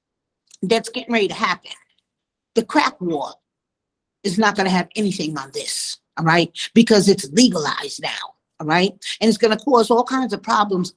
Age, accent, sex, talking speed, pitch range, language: 50-69, American, female, 180 wpm, 175-225 Hz, English